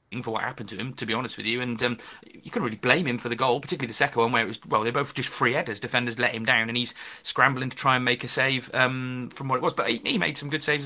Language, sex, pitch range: English, male, 115-130 Hz